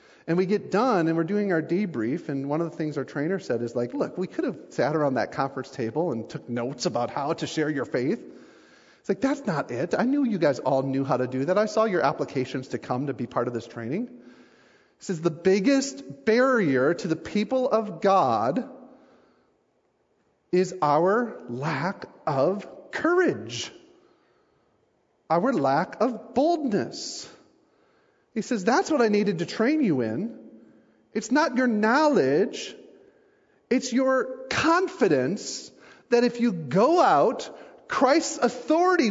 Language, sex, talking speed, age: English, male, 165 wpm, 40-59